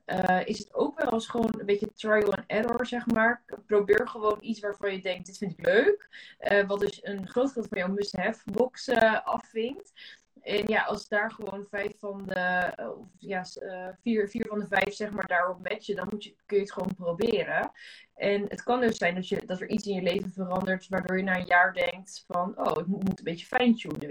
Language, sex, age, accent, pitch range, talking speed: Dutch, female, 20-39, Dutch, 185-210 Hz, 225 wpm